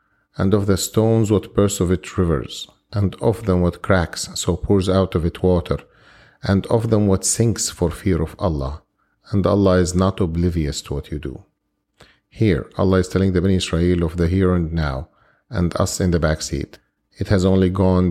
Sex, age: male, 40-59